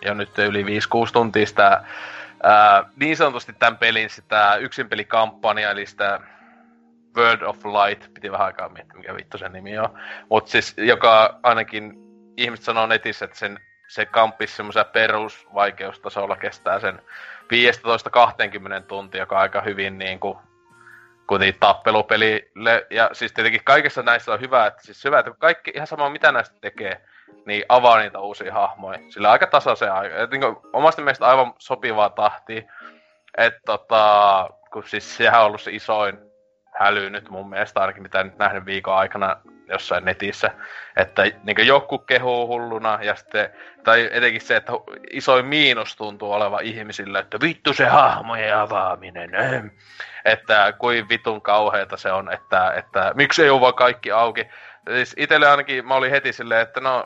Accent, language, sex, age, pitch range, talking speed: native, Finnish, male, 20-39, 100-125 Hz, 155 wpm